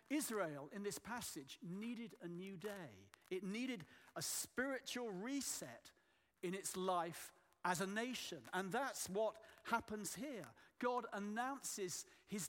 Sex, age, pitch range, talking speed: male, 50-69, 180-225 Hz, 130 wpm